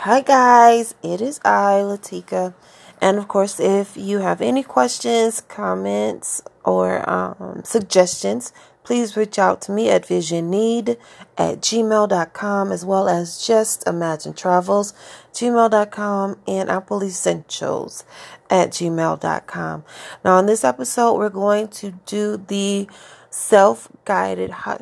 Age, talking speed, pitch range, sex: 30-49, 120 wpm, 170-215 Hz, female